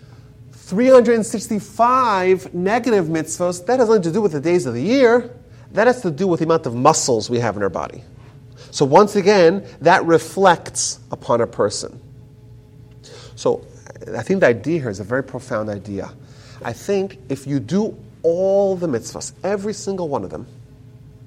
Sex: male